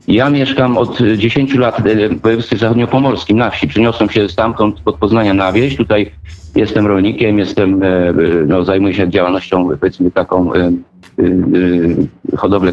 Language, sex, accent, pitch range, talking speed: Polish, male, native, 105-125 Hz, 130 wpm